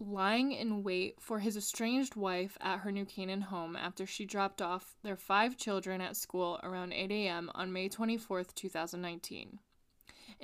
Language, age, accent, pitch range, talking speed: English, 20-39, American, 190-225 Hz, 160 wpm